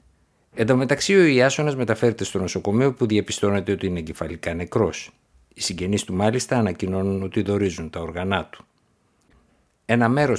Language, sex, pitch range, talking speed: Greek, male, 90-115 Hz, 150 wpm